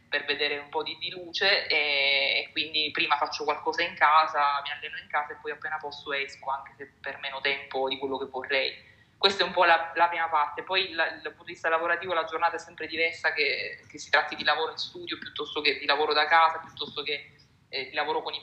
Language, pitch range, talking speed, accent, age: Italian, 145-175 Hz, 245 wpm, native, 20-39